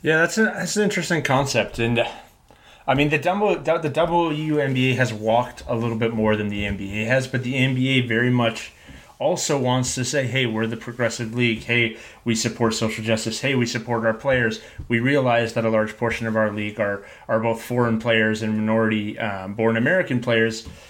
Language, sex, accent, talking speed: English, male, American, 195 wpm